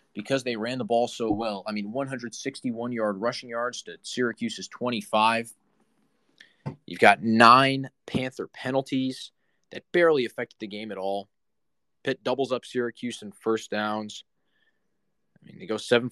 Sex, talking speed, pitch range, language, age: male, 145 wpm, 105-130 Hz, English, 20-39